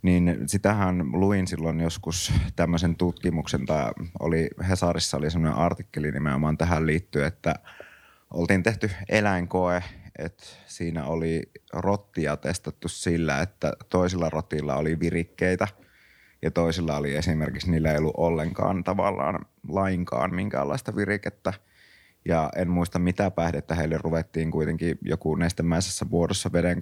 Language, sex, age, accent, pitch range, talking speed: Finnish, male, 30-49, native, 80-90 Hz, 120 wpm